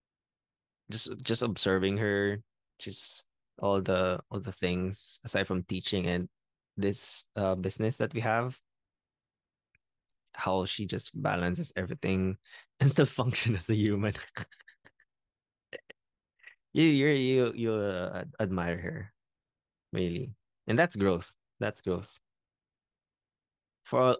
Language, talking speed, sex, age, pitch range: English, 110 wpm, male, 20-39, 95-130 Hz